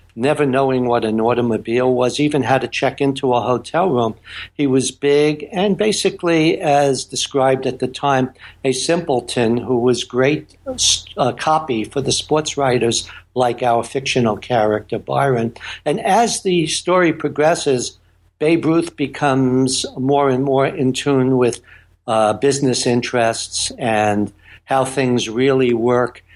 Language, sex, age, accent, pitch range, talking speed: English, male, 60-79, American, 115-145 Hz, 140 wpm